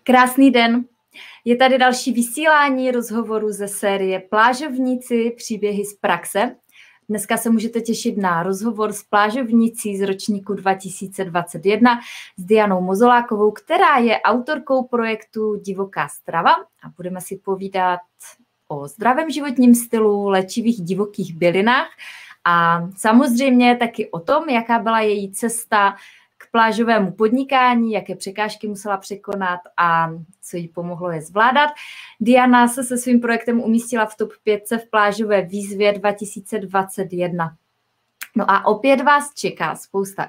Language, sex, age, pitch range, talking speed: Czech, female, 20-39, 195-240 Hz, 125 wpm